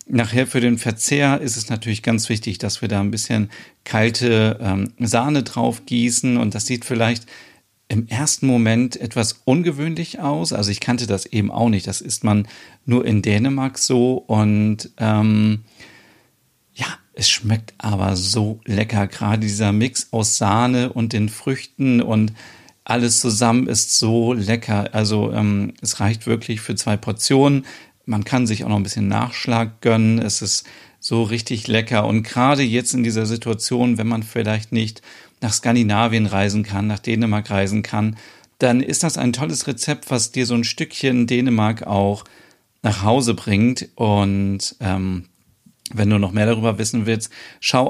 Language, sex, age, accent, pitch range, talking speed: German, male, 40-59, German, 105-120 Hz, 165 wpm